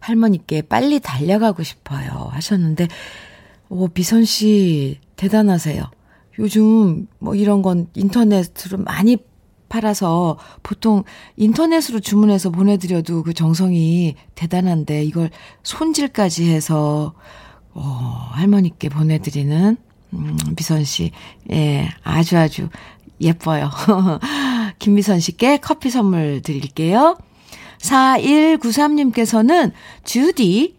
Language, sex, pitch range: Korean, female, 170-265 Hz